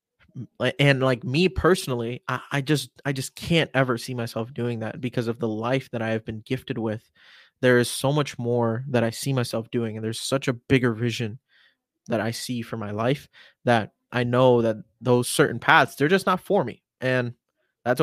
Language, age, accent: English, 20-39, American